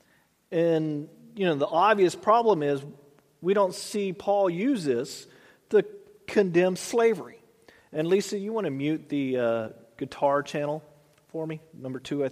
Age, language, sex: 40-59, English, male